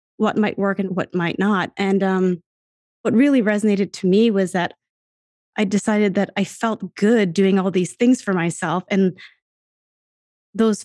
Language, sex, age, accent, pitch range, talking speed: English, female, 30-49, American, 180-215 Hz, 165 wpm